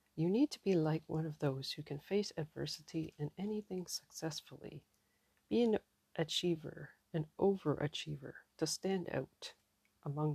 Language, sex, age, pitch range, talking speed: English, female, 40-59, 145-180 Hz, 140 wpm